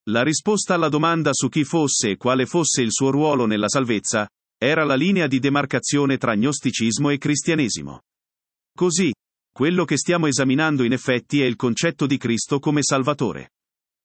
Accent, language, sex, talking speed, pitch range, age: native, Italian, male, 160 wpm, 125-160 Hz, 40-59